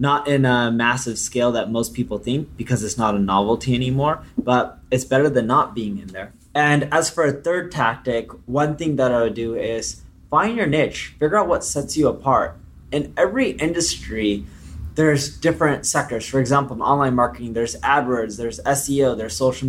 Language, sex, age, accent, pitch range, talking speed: English, male, 20-39, American, 110-135 Hz, 190 wpm